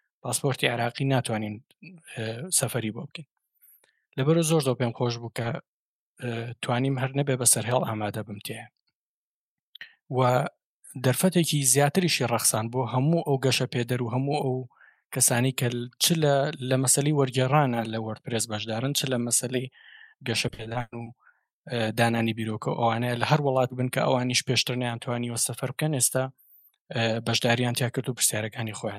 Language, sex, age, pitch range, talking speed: Arabic, male, 20-39, 120-140 Hz, 135 wpm